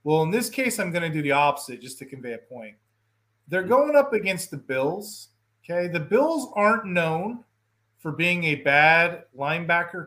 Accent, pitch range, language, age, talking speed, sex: American, 150-240 Hz, English, 30-49, 185 wpm, male